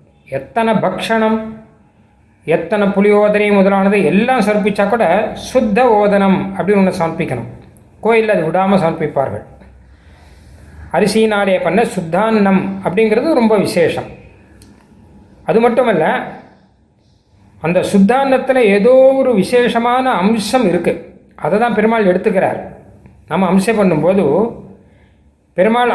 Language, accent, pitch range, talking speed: Tamil, native, 165-225 Hz, 100 wpm